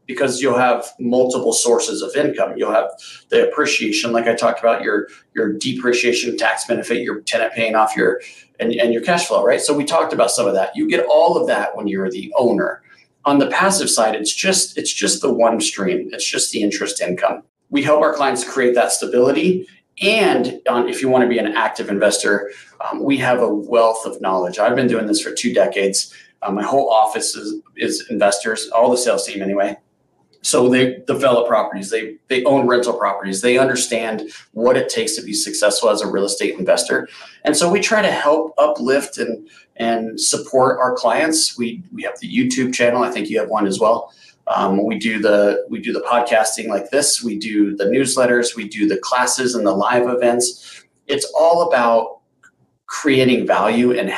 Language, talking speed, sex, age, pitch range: English, 200 wpm, male, 40-59, 110-145 Hz